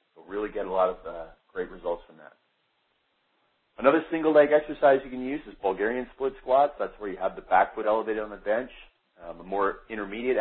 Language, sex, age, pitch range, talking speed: English, male, 40-59, 95-130 Hz, 200 wpm